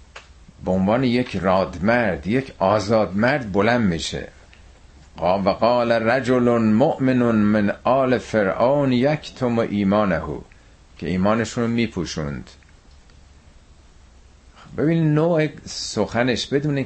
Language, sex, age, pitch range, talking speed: Persian, male, 50-69, 90-140 Hz, 90 wpm